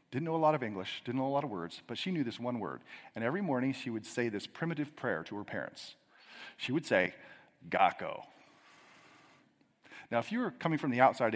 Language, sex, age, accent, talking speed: English, male, 40-59, American, 220 wpm